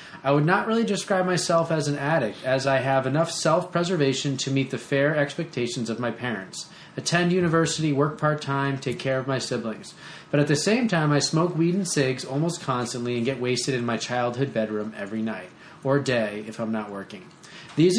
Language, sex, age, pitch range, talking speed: English, male, 20-39, 125-160 Hz, 195 wpm